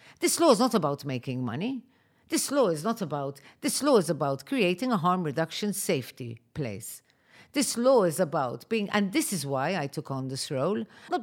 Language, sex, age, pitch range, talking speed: English, female, 50-69, 135-195 Hz, 200 wpm